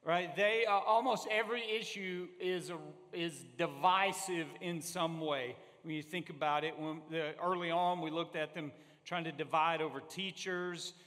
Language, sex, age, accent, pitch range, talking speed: English, male, 40-59, American, 160-190 Hz, 170 wpm